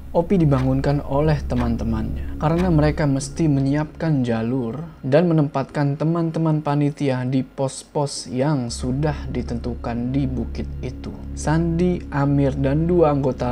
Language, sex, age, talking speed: Indonesian, male, 20-39, 115 wpm